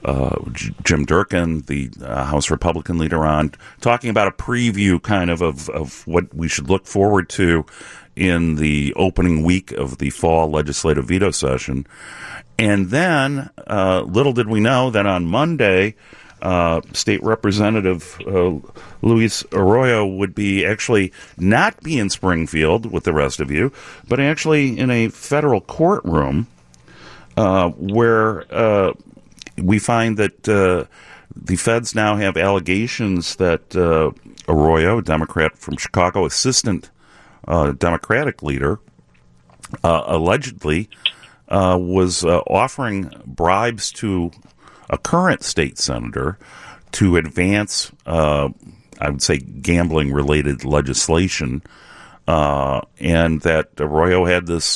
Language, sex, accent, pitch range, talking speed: English, male, American, 75-105 Hz, 125 wpm